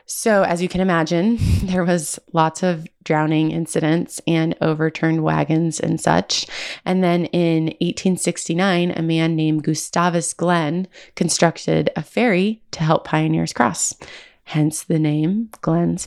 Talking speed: 135 wpm